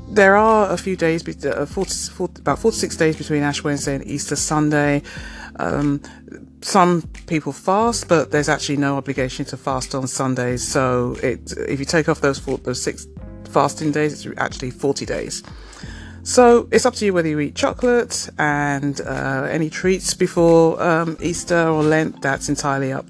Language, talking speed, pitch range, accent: English, 165 wpm, 140-175 Hz, British